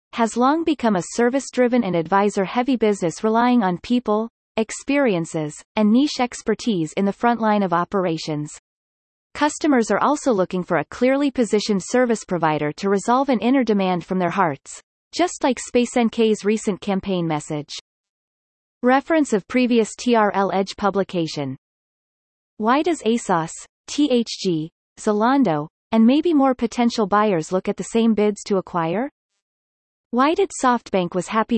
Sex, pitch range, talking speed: female, 185-245 Hz, 140 wpm